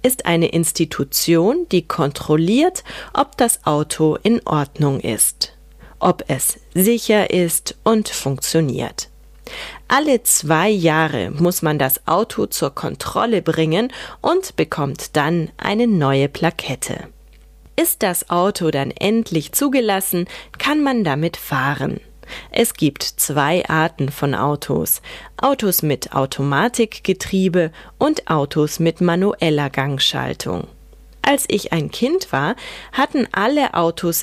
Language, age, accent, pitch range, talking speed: German, 30-49, German, 150-210 Hz, 115 wpm